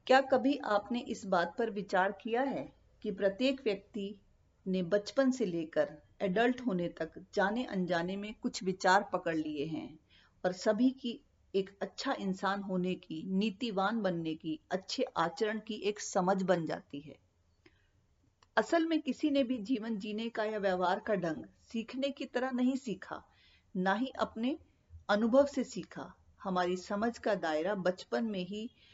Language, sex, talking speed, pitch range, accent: Hindi, female, 160 wpm, 180-230 Hz, native